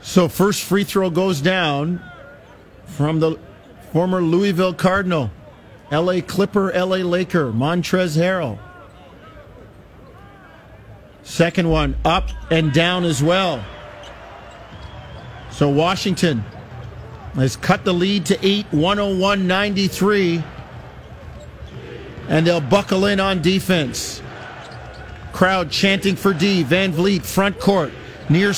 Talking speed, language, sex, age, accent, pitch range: 105 wpm, English, male, 50-69, American, 150-200 Hz